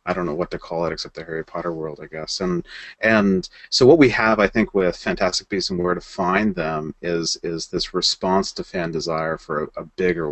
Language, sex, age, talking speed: English, male, 30-49, 240 wpm